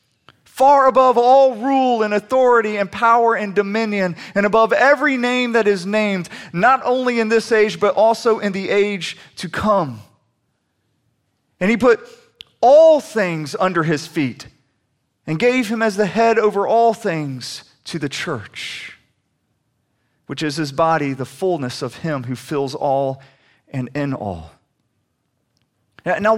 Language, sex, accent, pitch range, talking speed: English, male, American, 135-225 Hz, 145 wpm